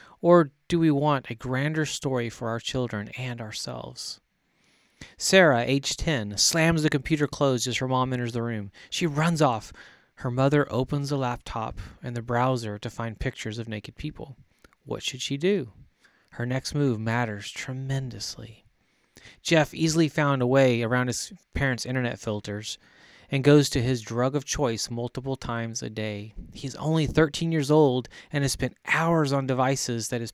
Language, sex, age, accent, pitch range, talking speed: English, male, 30-49, American, 115-145 Hz, 170 wpm